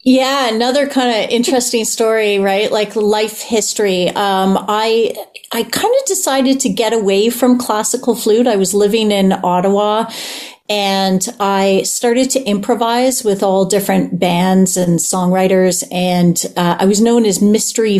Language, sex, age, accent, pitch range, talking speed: English, female, 40-59, American, 195-255 Hz, 150 wpm